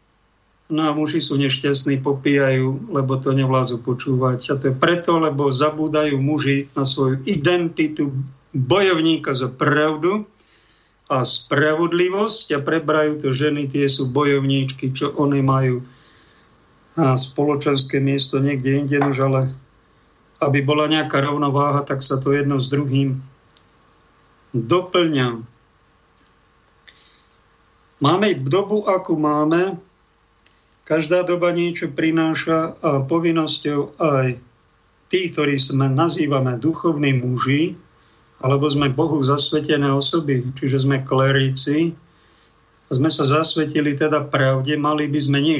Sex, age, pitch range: male, 50-69, 135-165 Hz